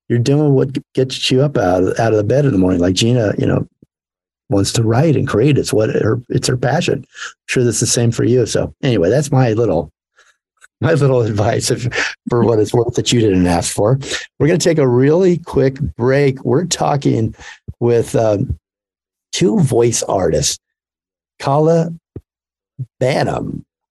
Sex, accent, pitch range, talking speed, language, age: male, American, 115-150 Hz, 180 wpm, English, 50-69